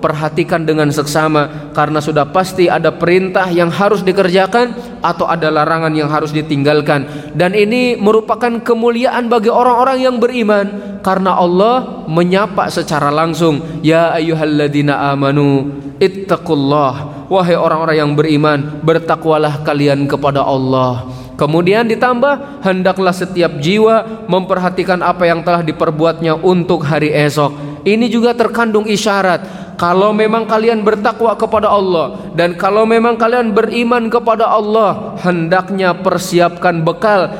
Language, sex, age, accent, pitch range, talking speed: Indonesian, male, 20-39, native, 155-220 Hz, 120 wpm